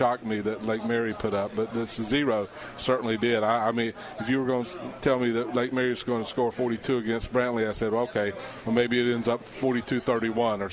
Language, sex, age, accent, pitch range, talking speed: English, male, 40-59, American, 115-130 Hz, 240 wpm